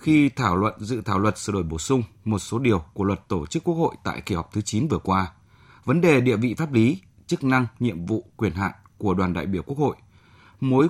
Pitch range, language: 100-135 Hz, Vietnamese